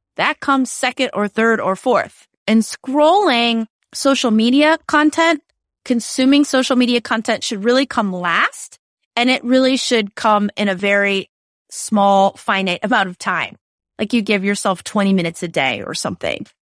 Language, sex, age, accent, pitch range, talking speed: English, female, 30-49, American, 200-255 Hz, 155 wpm